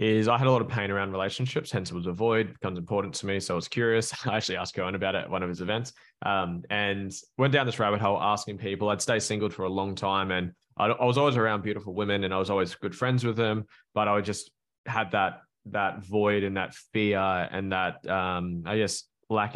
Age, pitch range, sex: 20-39, 95-110 Hz, male